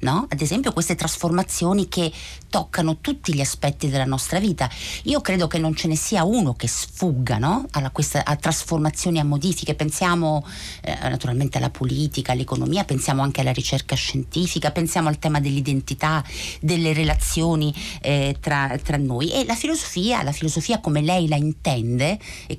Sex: female